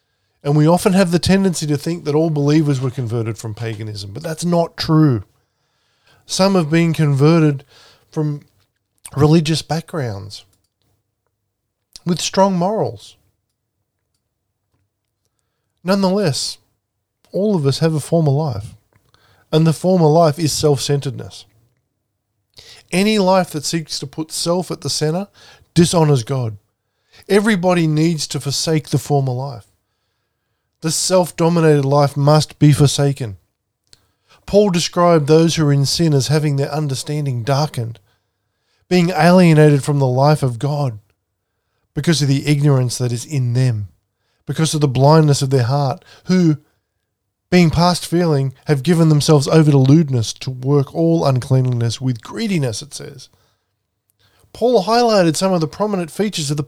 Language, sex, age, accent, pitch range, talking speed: English, male, 20-39, Australian, 115-160 Hz, 135 wpm